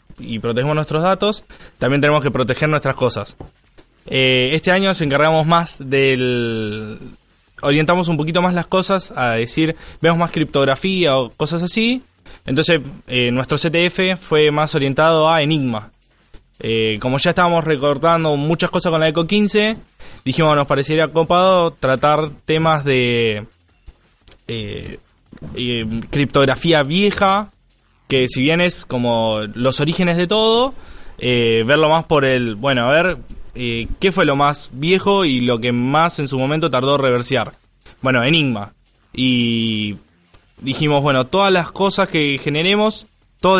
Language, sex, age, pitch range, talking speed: Spanish, male, 20-39, 130-180 Hz, 145 wpm